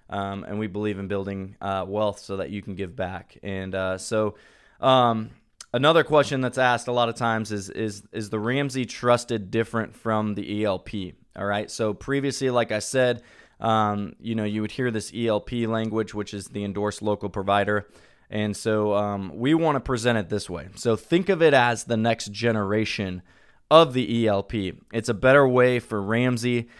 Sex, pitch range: male, 100-120 Hz